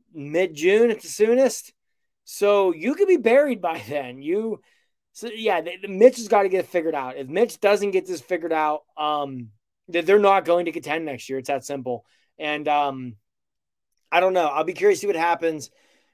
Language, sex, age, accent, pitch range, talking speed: English, male, 20-39, American, 145-185 Hz, 200 wpm